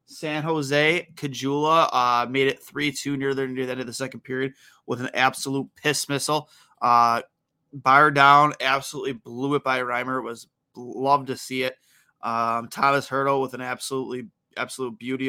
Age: 20-39